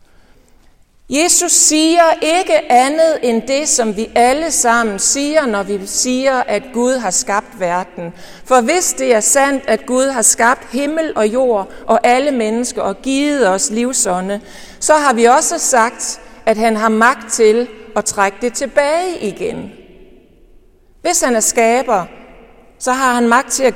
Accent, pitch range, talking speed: native, 205-260 Hz, 160 wpm